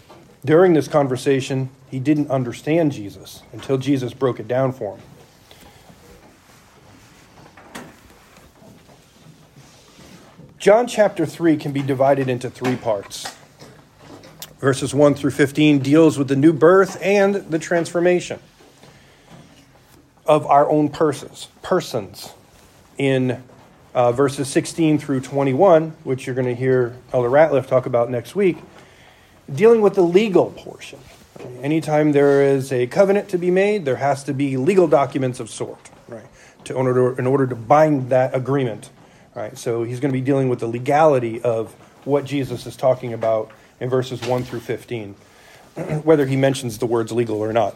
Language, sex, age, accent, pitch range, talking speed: English, male, 40-59, American, 125-150 Hz, 150 wpm